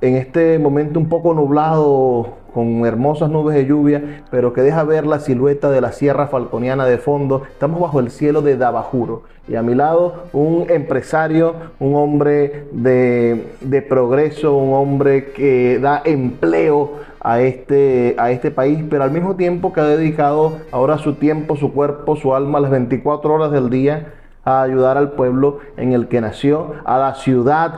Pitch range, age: 130-155 Hz, 30-49